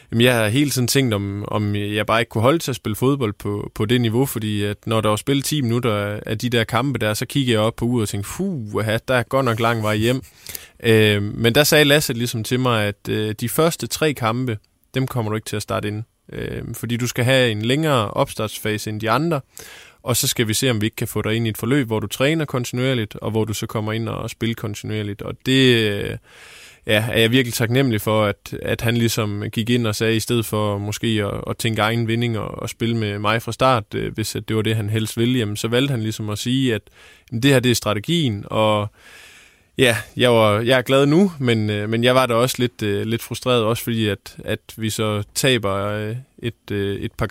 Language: Danish